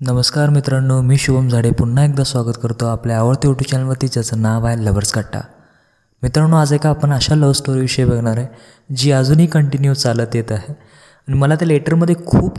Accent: native